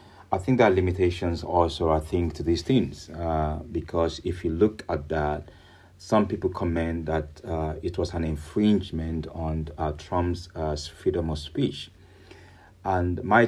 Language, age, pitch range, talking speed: English, 40-59, 80-90 Hz, 160 wpm